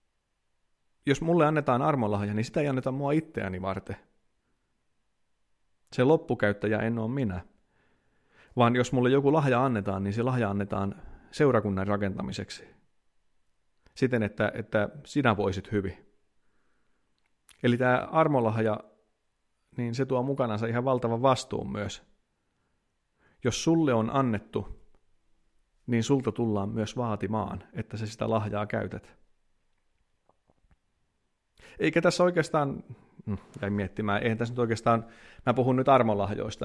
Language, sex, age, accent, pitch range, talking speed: Finnish, male, 30-49, native, 105-140 Hz, 120 wpm